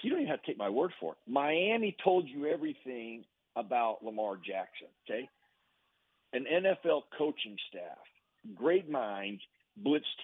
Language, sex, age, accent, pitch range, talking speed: English, male, 50-69, American, 115-145 Hz, 145 wpm